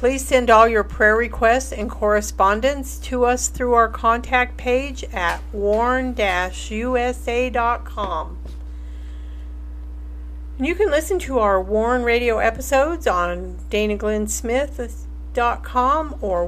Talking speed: 100 wpm